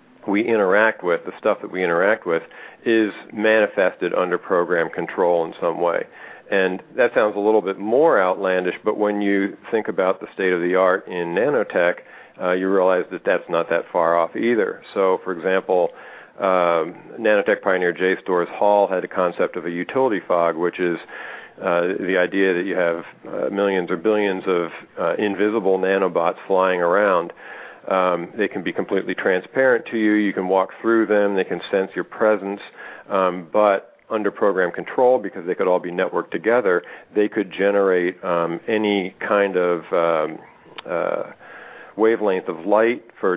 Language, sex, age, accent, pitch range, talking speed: English, male, 50-69, American, 90-105 Hz, 170 wpm